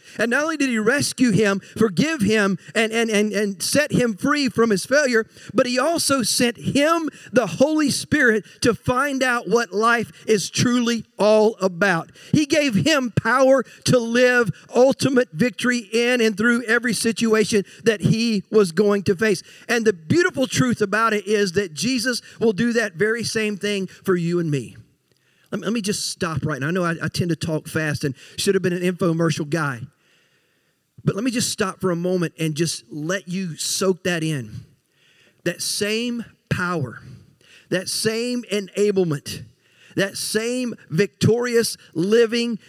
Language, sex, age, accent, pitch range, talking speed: English, male, 50-69, American, 180-235 Hz, 165 wpm